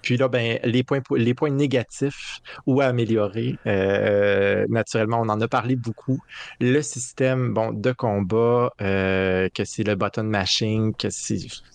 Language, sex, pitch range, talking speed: French, male, 105-125 Hz, 160 wpm